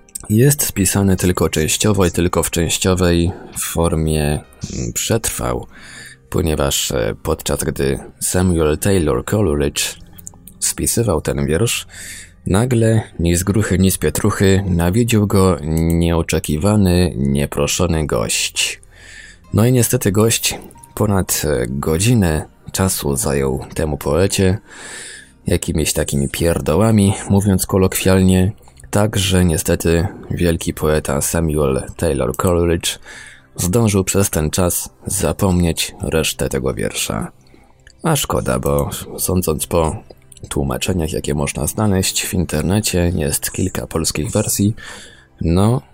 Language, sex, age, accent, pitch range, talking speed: Polish, male, 20-39, native, 75-95 Hz, 100 wpm